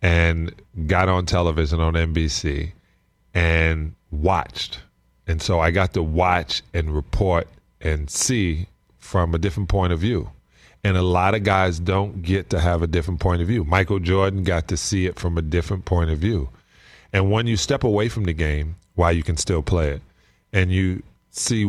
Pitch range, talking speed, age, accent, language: 80-100 Hz, 190 wpm, 40-59, American, English